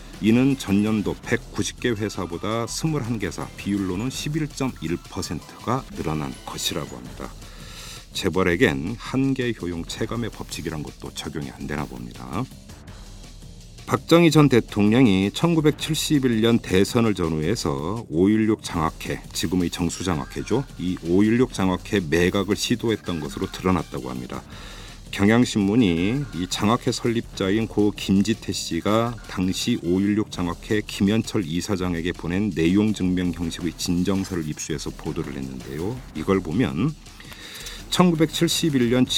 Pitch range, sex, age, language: 85-115 Hz, male, 50-69, Korean